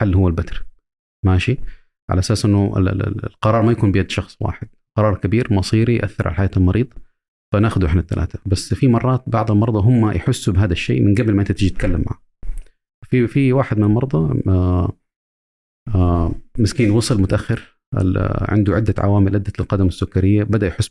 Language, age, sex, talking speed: Arabic, 40-59, male, 160 wpm